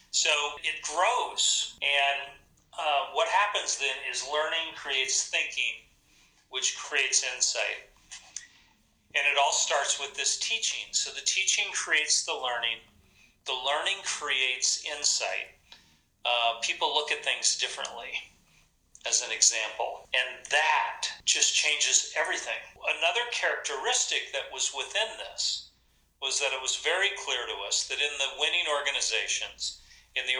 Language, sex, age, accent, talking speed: English, male, 40-59, American, 130 wpm